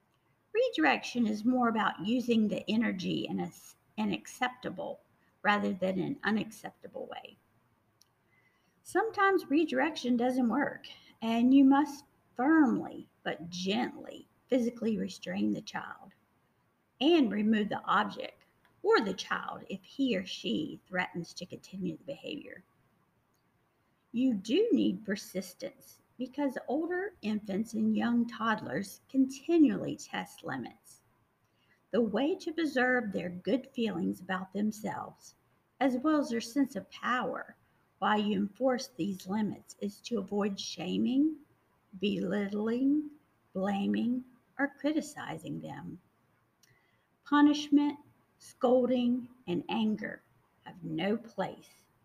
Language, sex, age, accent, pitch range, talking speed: English, female, 50-69, American, 200-275 Hz, 110 wpm